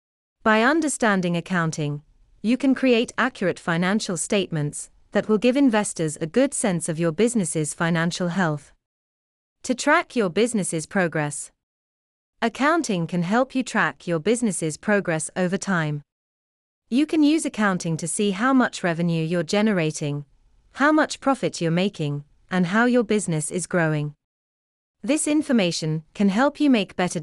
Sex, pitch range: female, 160-225 Hz